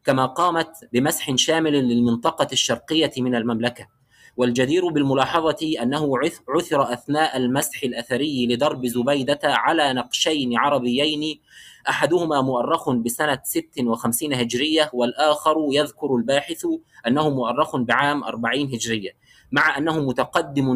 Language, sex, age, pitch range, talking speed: Arabic, male, 20-39, 125-155 Hz, 105 wpm